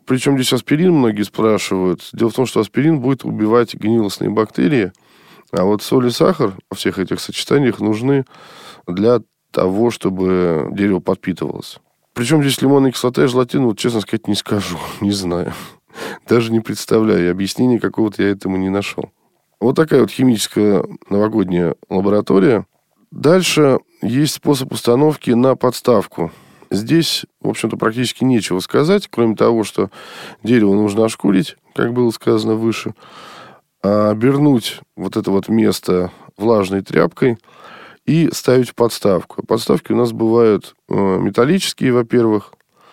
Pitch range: 100-125 Hz